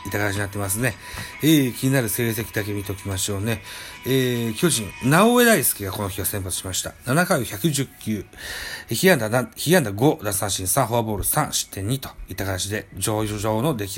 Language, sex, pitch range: Japanese, male, 100-135 Hz